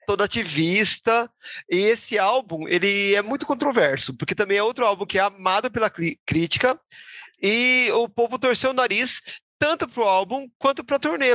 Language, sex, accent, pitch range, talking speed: Portuguese, male, Brazilian, 165-235 Hz, 170 wpm